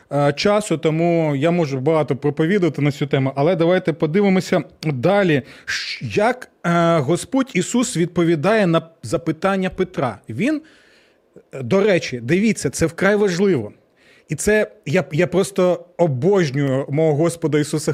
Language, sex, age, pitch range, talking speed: Ukrainian, male, 20-39, 150-195 Hz, 120 wpm